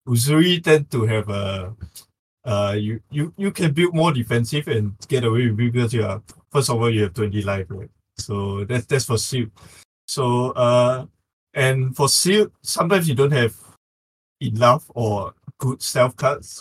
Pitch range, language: 105-125 Hz, English